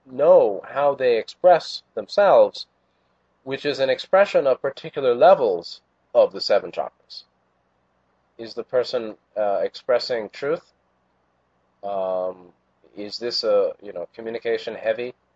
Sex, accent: male, American